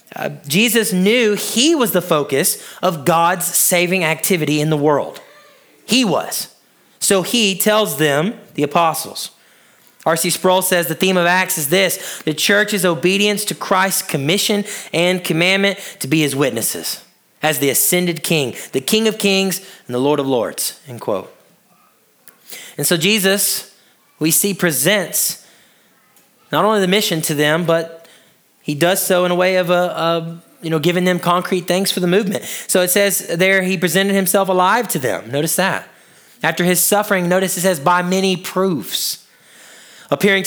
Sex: male